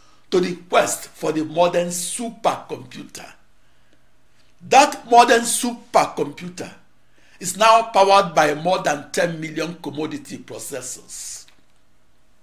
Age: 60-79